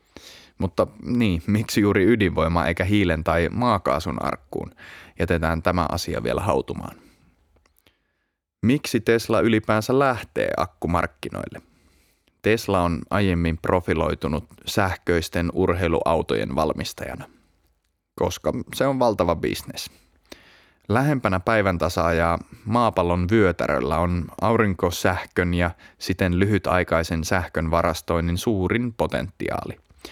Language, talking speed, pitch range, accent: Finnish, 95 wpm, 85-100 Hz, native